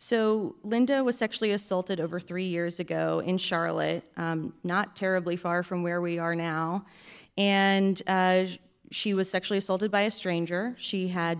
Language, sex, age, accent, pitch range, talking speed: English, female, 30-49, American, 165-190 Hz, 165 wpm